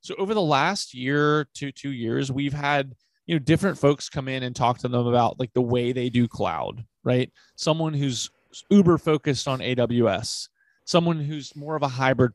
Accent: American